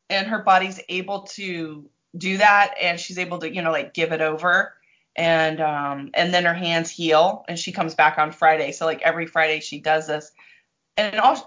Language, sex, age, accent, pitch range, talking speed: English, female, 30-49, American, 165-225 Hz, 200 wpm